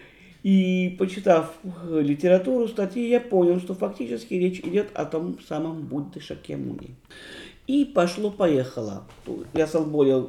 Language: Russian